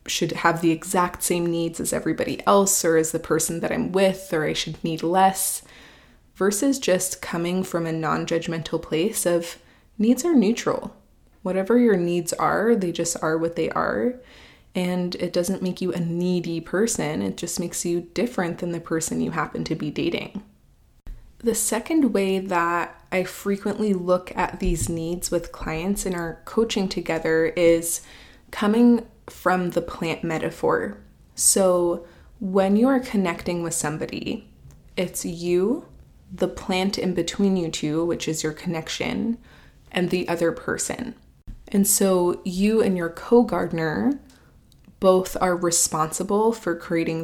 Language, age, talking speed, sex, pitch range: English, 20-39, 150 wpm, female, 170-200 Hz